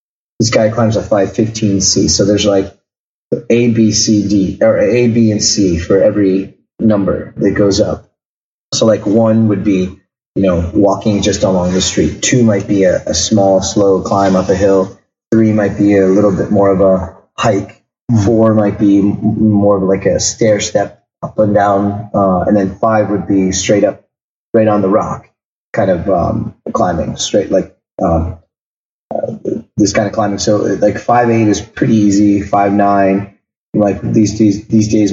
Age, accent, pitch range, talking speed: 30-49, American, 95-110 Hz, 180 wpm